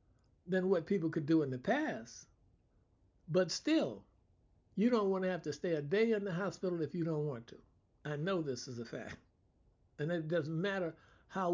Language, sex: English, male